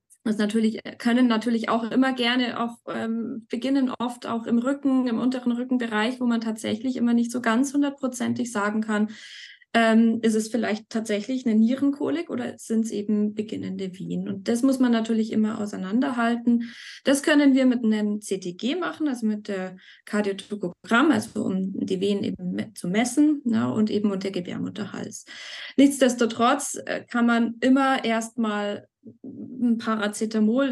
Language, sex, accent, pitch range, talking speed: German, female, German, 215-250 Hz, 150 wpm